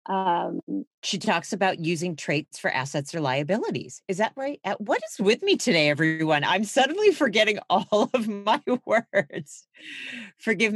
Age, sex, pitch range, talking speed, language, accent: 40-59, female, 145-205 Hz, 150 wpm, English, American